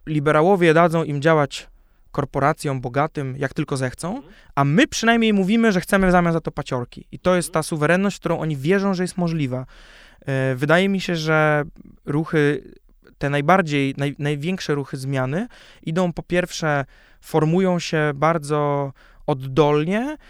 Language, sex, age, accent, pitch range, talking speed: Polish, male, 20-39, native, 140-175 Hz, 145 wpm